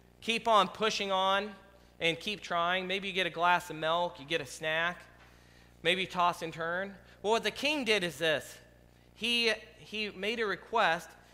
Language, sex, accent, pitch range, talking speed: English, male, American, 155-215 Hz, 180 wpm